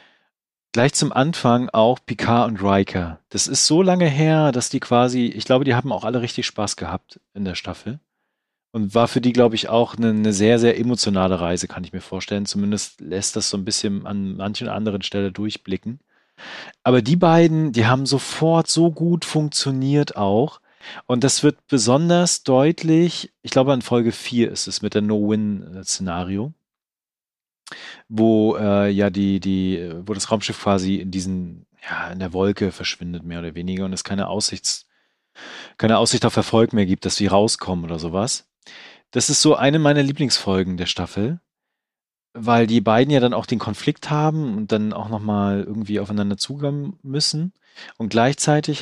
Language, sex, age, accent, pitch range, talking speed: German, male, 40-59, German, 100-130 Hz, 175 wpm